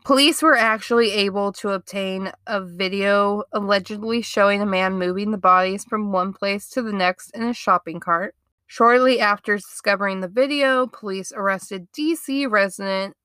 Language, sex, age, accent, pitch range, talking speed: English, female, 20-39, American, 180-220 Hz, 155 wpm